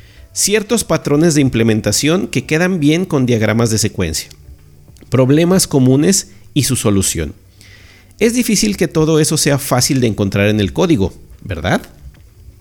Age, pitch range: 50-69, 105-160 Hz